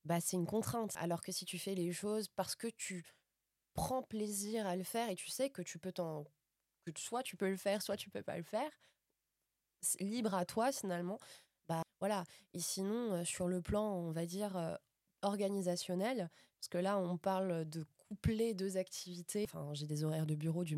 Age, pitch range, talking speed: 20-39, 170-200 Hz, 205 wpm